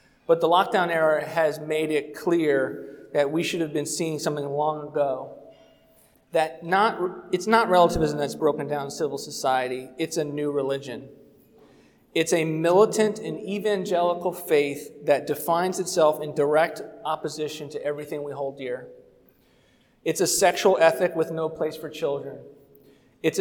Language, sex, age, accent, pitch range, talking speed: English, male, 40-59, American, 150-180 Hz, 150 wpm